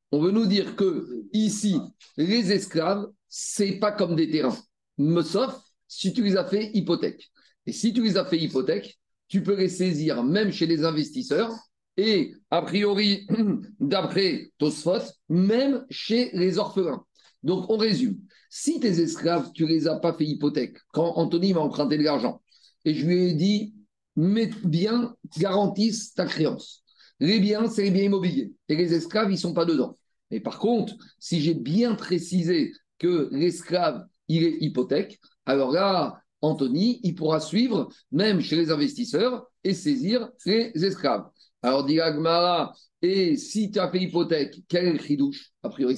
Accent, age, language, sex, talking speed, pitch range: French, 50-69, French, male, 165 wpm, 160-210 Hz